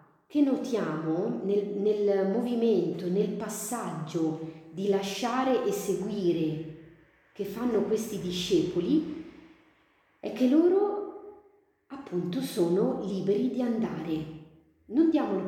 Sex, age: female, 40-59